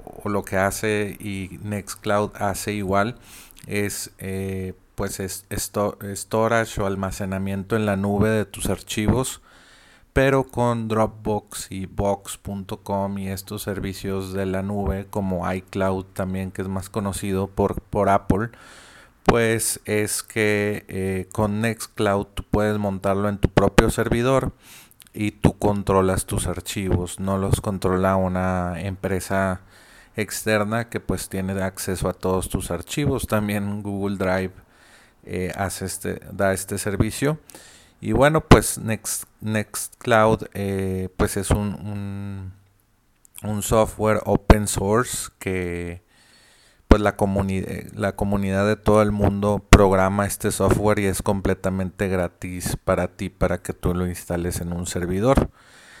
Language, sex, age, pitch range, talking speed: Spanish, male, 30-49, 95-105 Hz, 135 wpm